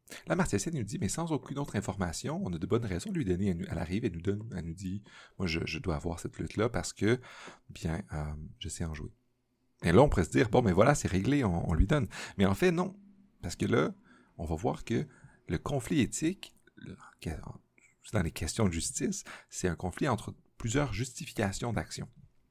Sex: male